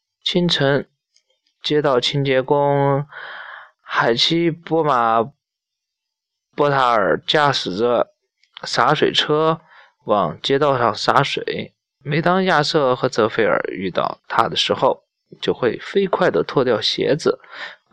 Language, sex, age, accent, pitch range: Chinese, male, 20-39, native, 125-170 Hz